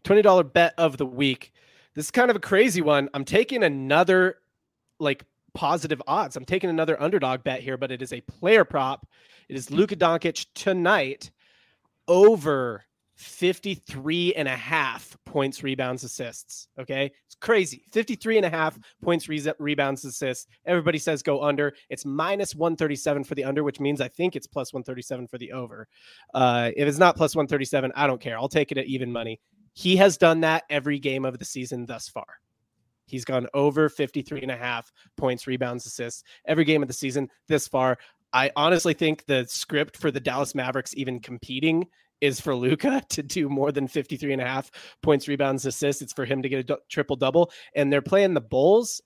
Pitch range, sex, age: 130-155 Hz, male, 30-49